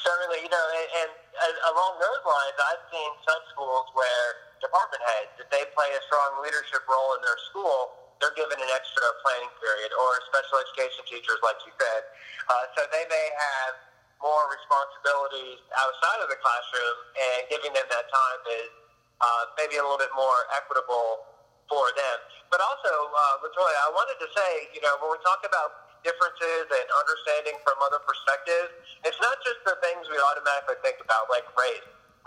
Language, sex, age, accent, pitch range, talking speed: English, male, 30-49, American, 130-170 Hz, 175 wpm